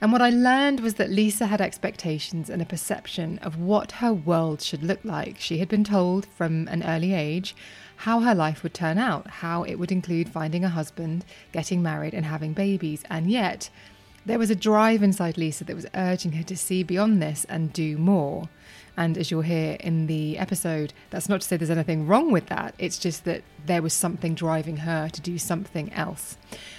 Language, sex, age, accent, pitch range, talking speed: English, female, 20-39, British, 160-195 Hz, 205 wpm